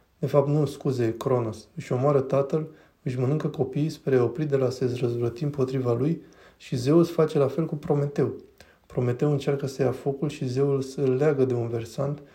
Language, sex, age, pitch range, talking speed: Romanian, male, 20-39, 125-145 Hz, 185 wpm